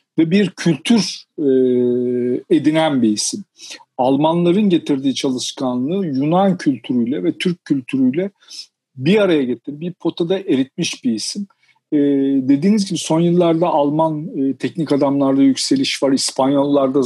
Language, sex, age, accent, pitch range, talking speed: Turkish, male, 50-69, native, 130-170 Hz, 125 wpm